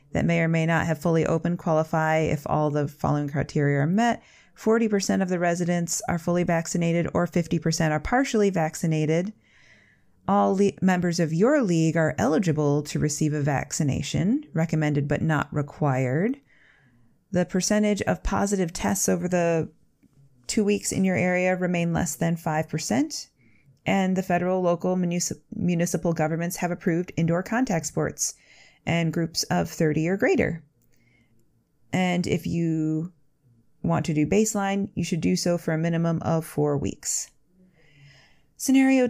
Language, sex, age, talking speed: English, female, 30-49, 145 wpm